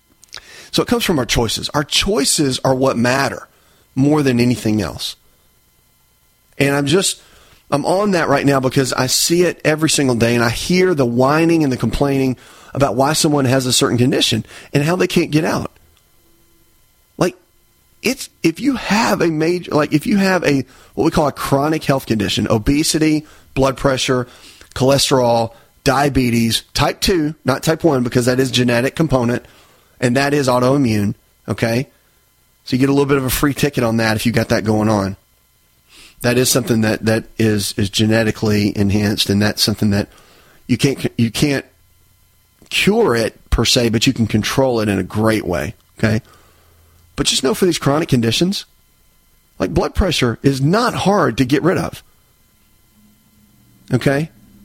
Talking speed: 170 wpm